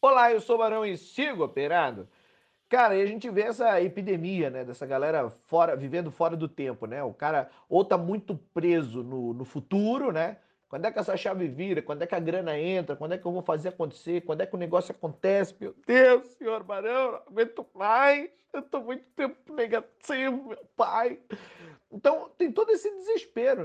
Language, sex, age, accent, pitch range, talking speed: Portuguese, male, 40-59, Brazilian, 155-240 Hz, 195 wpm